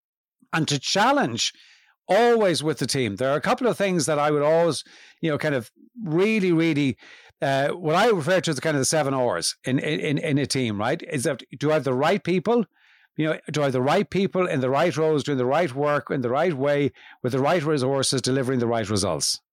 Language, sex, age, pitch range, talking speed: English, male, 60-79, 140-190 Hz, 235 wpm